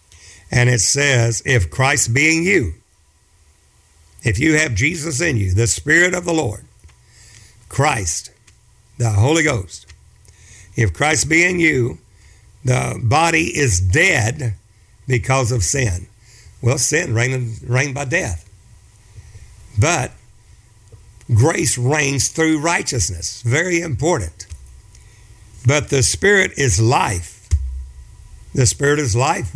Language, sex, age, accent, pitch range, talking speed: English, male, 60-79, American, 100-130 Hz, 110 wpm